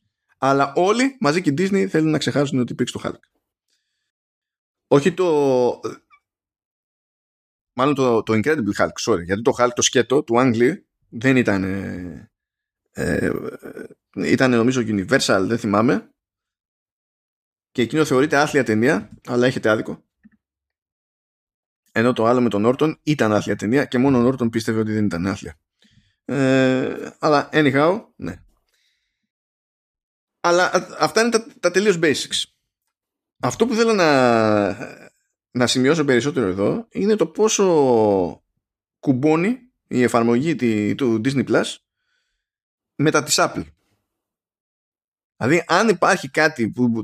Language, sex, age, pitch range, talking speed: Greek, male, 20-39, 110-155 Hz, 130 wpm